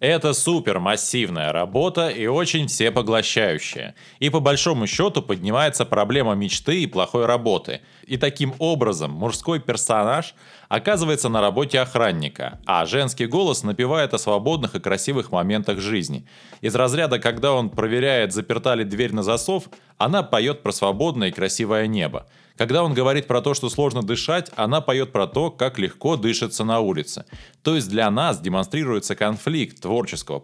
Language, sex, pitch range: Russian, male, 105-145 Hz